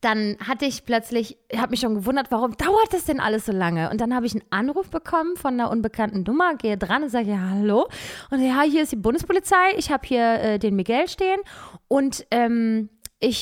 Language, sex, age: German, female, 20-39